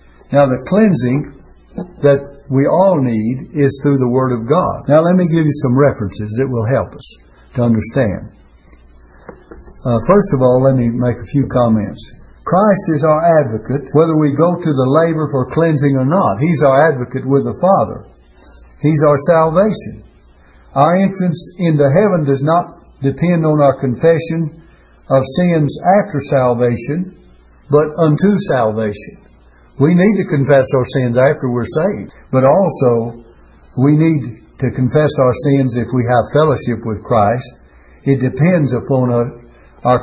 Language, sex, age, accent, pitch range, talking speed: English, male, 60-79, American, 110-155 Hz, 155 wpm